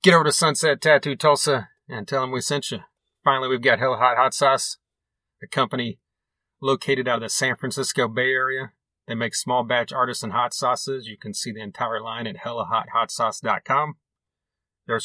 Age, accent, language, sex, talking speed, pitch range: 30-49, American, English, male, 185 wpm, 110-135 Hz